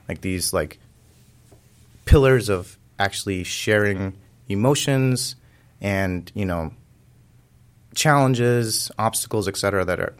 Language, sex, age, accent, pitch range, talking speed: English, male, 30-49, American, 95-125 Hz, 100 wpm